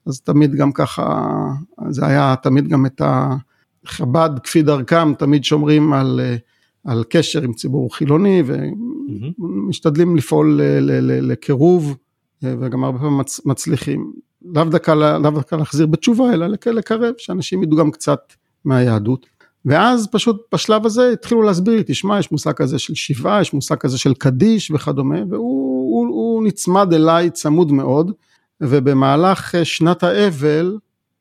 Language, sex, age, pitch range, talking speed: Hebrew, male, 50-69, 135-165 Hz, 135 wpm